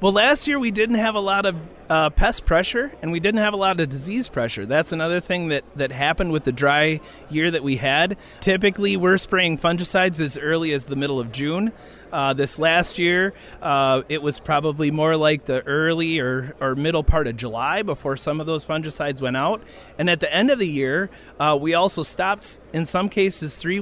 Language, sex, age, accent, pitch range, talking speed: English, male, 30-49, American, 140-180 Hz, 215 wpm